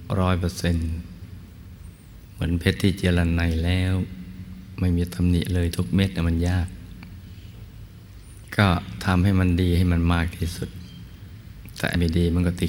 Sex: male